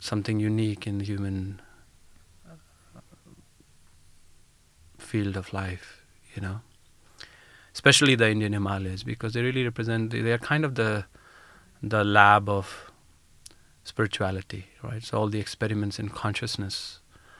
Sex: male